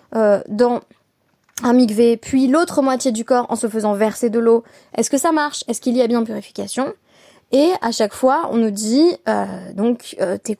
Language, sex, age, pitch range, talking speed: French, female, 20-39, 205-270 Hz, 205 wpm